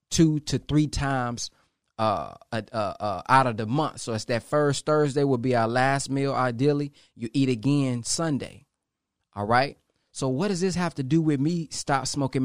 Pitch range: 125-155 Hz